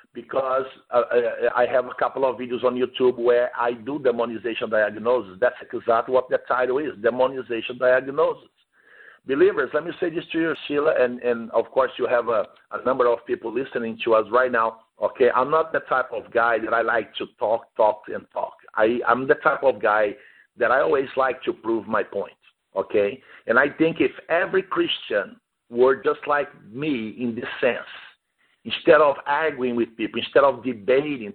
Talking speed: 190 wpm